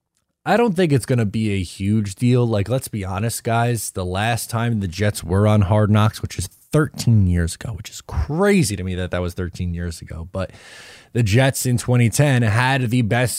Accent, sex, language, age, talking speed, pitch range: American, male, English, 20-39, 215 wpm, 95-110 Hz